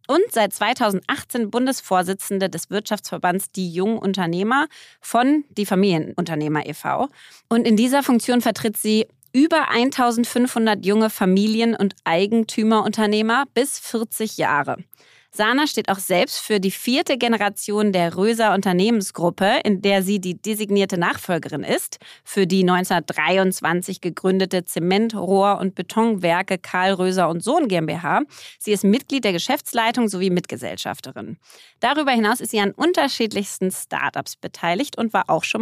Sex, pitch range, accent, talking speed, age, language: female, 185-230 Hz, German, 130 wpm, 30-49, German